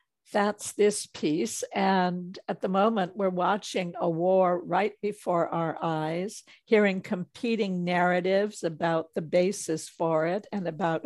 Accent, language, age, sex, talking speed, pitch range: American, English, 60-79, female, 135 wpm, 175-200 Hz